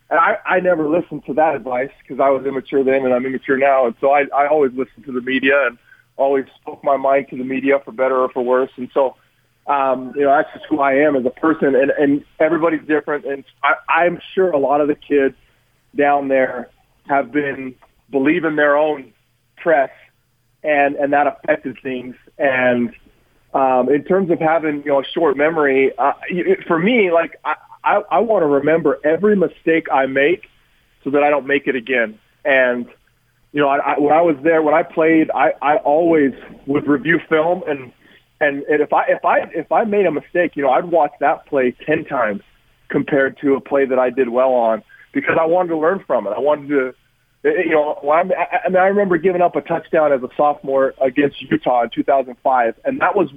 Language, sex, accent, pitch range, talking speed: English, male, American, 130-155 Hz, 215 wpm